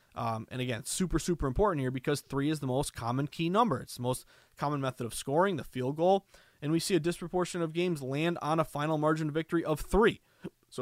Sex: male